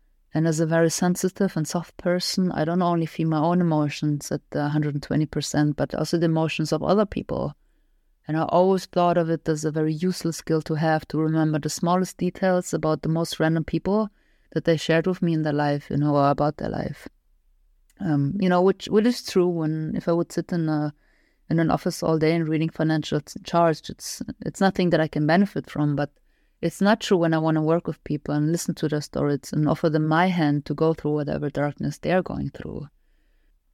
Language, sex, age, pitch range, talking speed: English, female, 30-49, 150-175 Hz, 215 wpm